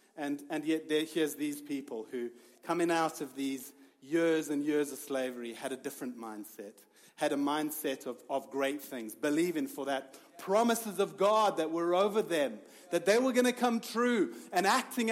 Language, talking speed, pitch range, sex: English, 185 wpm, 125-170 Hz, male